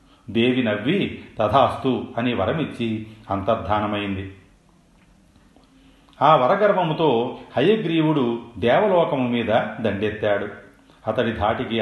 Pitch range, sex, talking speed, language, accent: 105-130 Hz, male, 70 wpm, Telugu, native